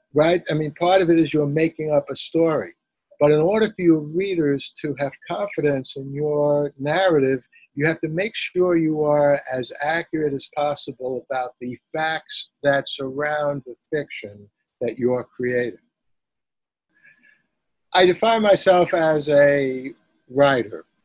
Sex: male